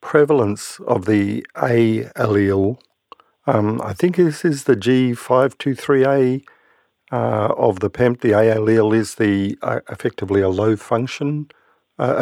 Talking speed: 145 wpm